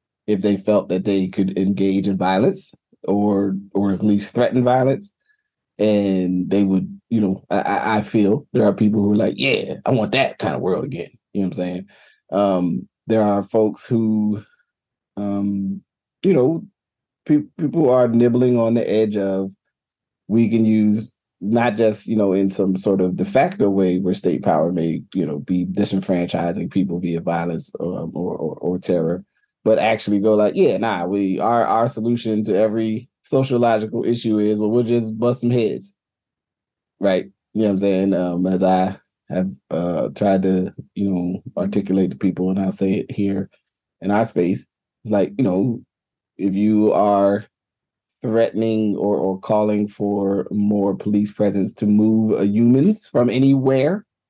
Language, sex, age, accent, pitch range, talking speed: English, male, 30-49, American, 95-115 Hz, 170 wpm